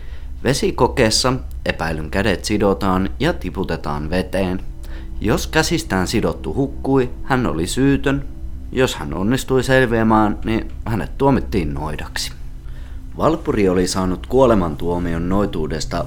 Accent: native